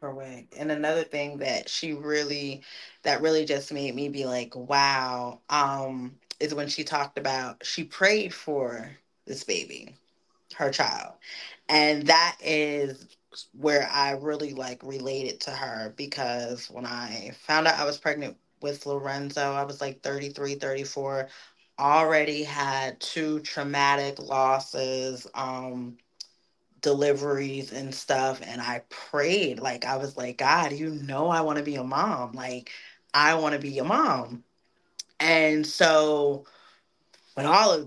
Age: 20-39